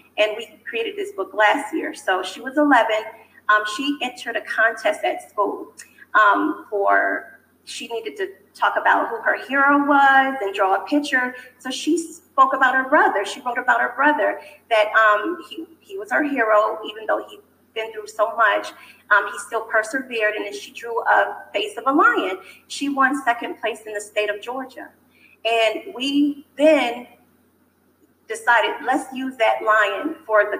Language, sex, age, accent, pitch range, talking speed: English, female, 30-49, American, 215-310 Hz, 175 wpm